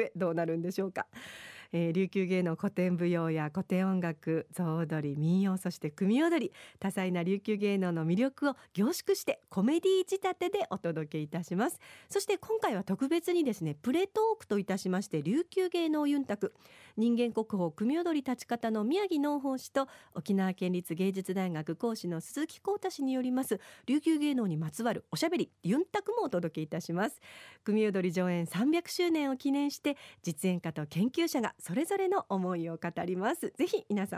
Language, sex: Japanese, female